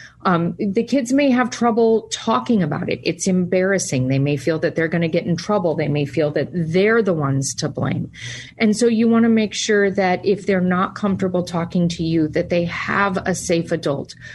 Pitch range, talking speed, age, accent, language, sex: 165-205 Hz, 215 wpm, 40-59, American, English, female